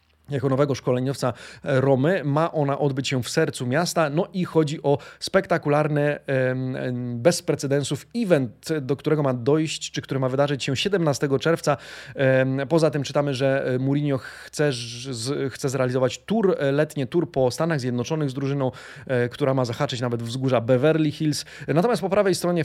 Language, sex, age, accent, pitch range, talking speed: Polish, male, 30-49, native, 130-160 Hz, 150 wpm